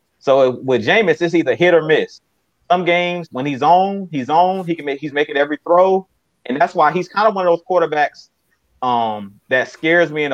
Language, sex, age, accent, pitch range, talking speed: English, male, 30-49, American, 140-175 Hz, 215 wpm